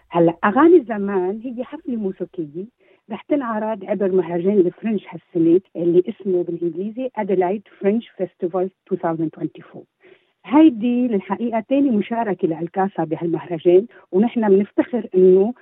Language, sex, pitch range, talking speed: Arabic, female, 175-245 Hz, 100 wpm